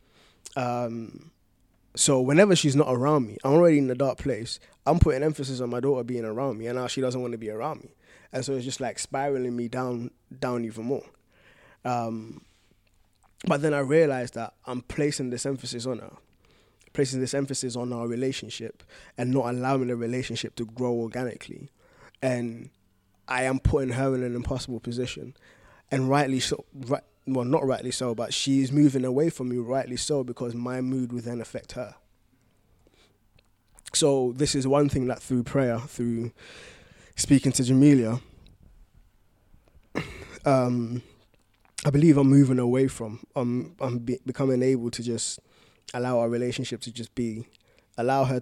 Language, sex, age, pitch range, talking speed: English, male, 20-39, 115-135 Hz, 165 wpm